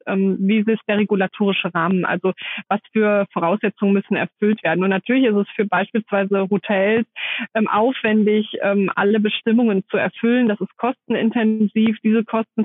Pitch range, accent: 195-225 Hz, German